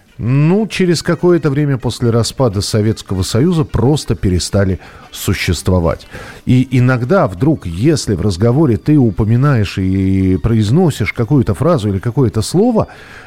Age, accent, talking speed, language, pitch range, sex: 40-59, native, 120 wpm, Russian, 100-145 Hz, male